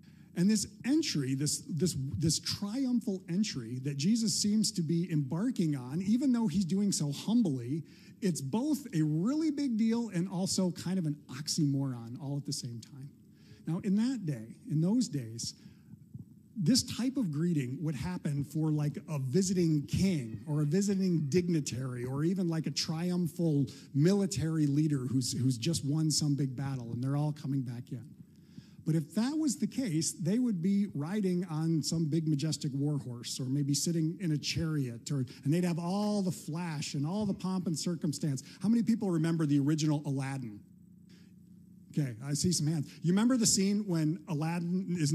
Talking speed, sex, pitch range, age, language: 175 wpm, male, 145-185 Hz, 50-69, English